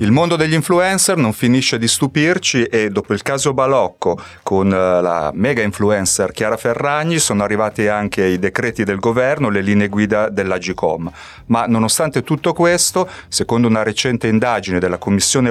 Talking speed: 160 wpm